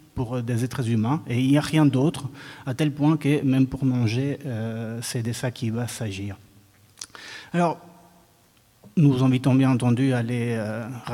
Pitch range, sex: 125-155 Hz, male